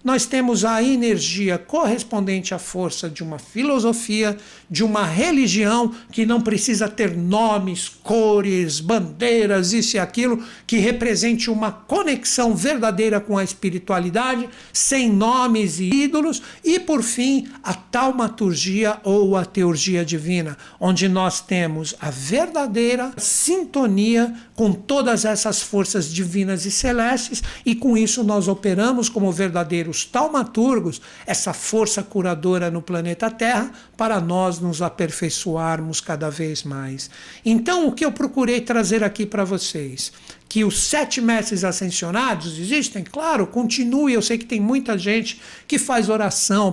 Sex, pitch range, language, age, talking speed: male, 190-245 Hz, Portuguese, 60-79, 135 wpm